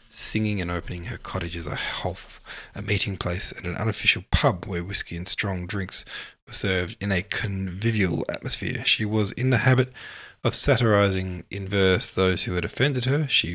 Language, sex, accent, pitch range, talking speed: English, male, Australian, 90-115 Hz, 180 wpm